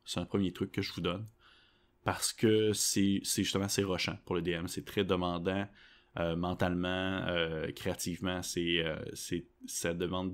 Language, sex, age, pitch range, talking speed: French, male, 20-39, 90-110 Hz, 175 wpm